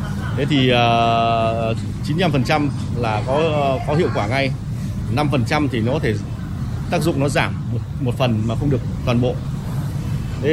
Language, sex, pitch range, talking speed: Vietnamese, male, 120-155 Hz, 160 wpm